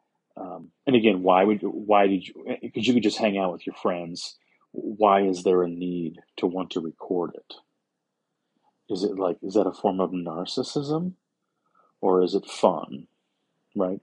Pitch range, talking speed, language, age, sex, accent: 90-105 Hz, 180 wpm, English, 30-49, male, American